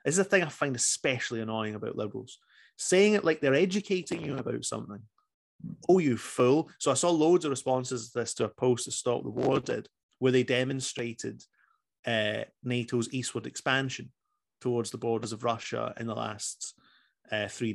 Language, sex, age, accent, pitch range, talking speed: English, male, 30-49, British, 120-160 Hz, 185 wpm